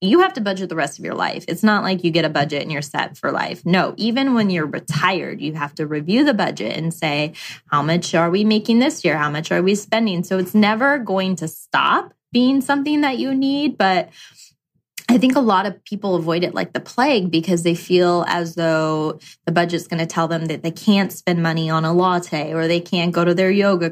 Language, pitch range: English, 170-210 Hz